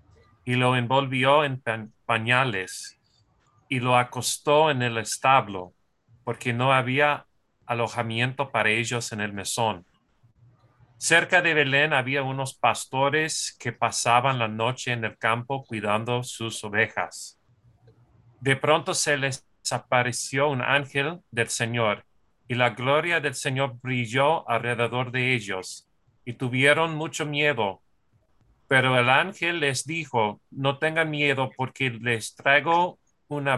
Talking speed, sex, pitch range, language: 125 wpm, male, 120-140 Hz, English